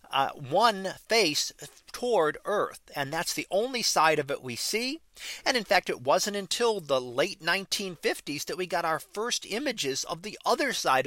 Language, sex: English, male